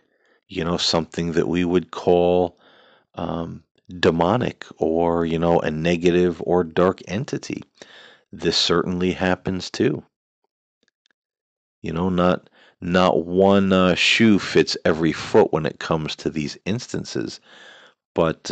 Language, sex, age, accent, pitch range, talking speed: English, male, 40-59, American, 75-90 Hz, 125 wpm